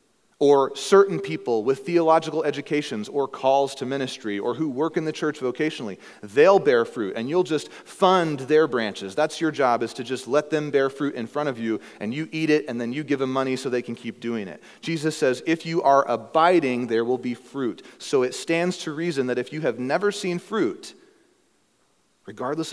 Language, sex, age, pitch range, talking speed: English, male, 30-49, 115-155 Hz, 210 wpm